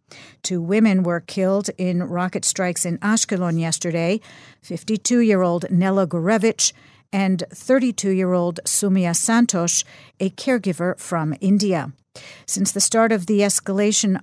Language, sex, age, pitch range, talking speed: English, female, 50-69, 170-200 Hz, 115 wpm